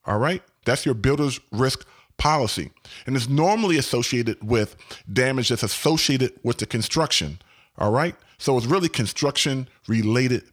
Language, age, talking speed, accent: English, 30-49, 135 wpm, American